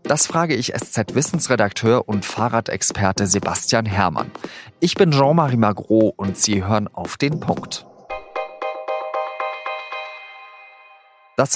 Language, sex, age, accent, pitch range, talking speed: German, male, 30-49, German, 100-130 Hz, 105 wpm